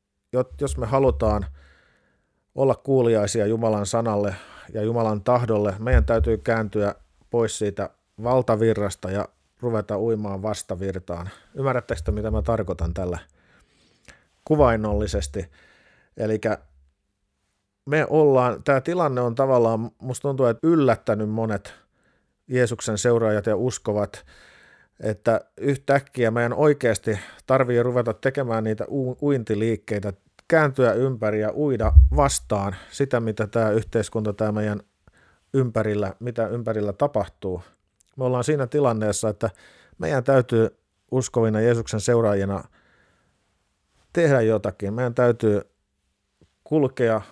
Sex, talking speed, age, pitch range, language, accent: male, 105 wpm, 50-69, 105-125 Hz, Finnish, native